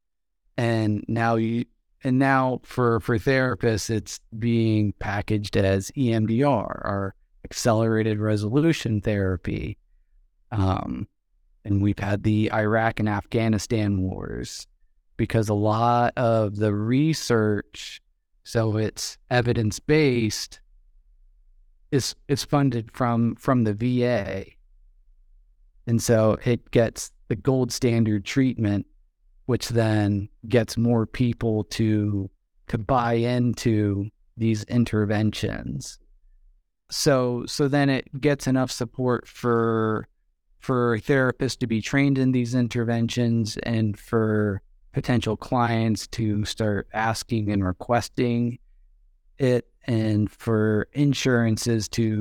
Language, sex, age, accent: English, male, 30-49, American